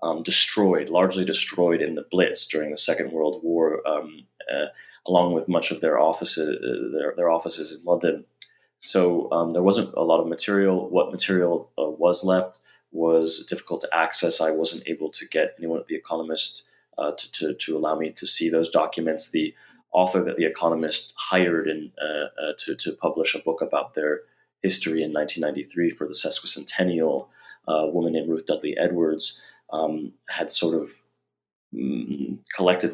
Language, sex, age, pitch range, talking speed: English, male, 30-49, 80-110 Hz, 175 wpm